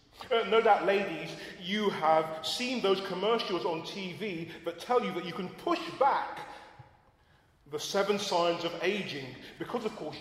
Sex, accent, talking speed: male, British, 160 wpm